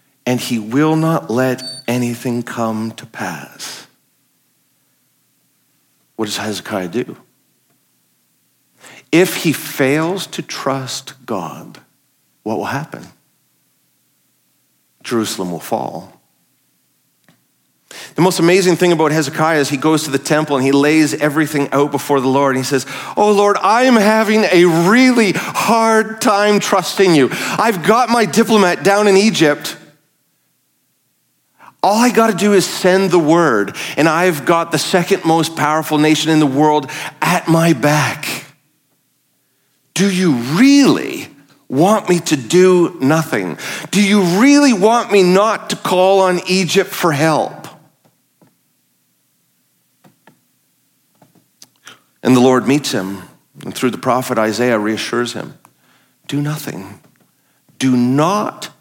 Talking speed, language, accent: 125 wpm, English, American